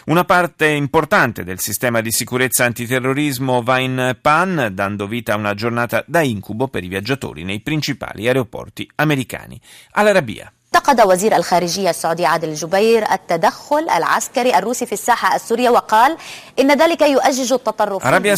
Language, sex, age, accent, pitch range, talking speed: Italian, male, 30-49, native, 115-165 Hz, 90 wpm